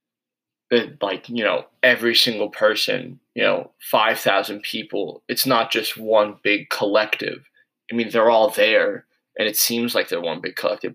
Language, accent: English, American